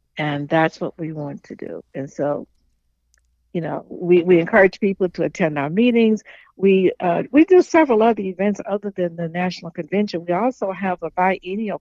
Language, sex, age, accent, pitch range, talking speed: English, female, 60-79, American, 170-200 Hz, 185 wpm